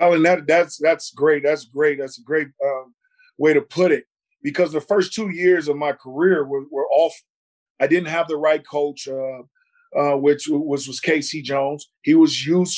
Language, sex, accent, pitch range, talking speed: English, male, American, 155-220 Hz, 210 wpm